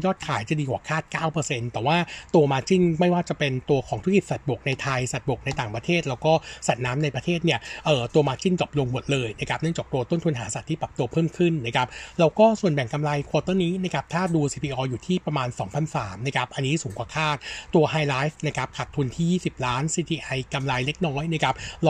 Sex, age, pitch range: male, 60-79, 135-165 Hz